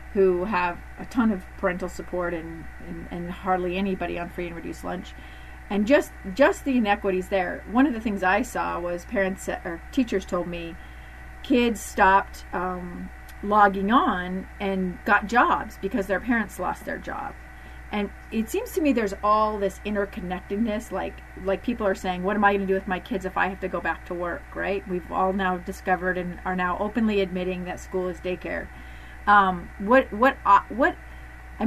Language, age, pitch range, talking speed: English, 40-59, 180-230 Hz, 190 wpm